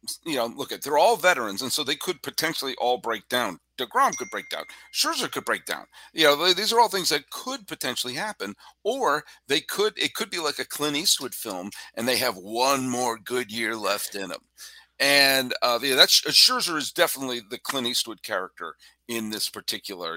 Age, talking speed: 50-69, 205 wpm